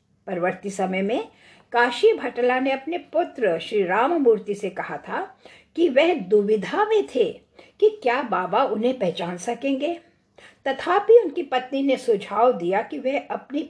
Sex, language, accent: female, English, Indian